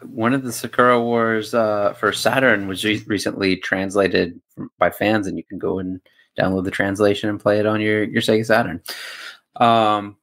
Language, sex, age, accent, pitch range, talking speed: English, male, 30-49, American, 90-115 Hz, 175 wpm